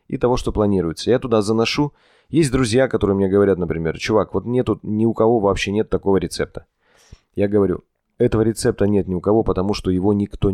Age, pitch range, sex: 20-39, 95-125 Hz, male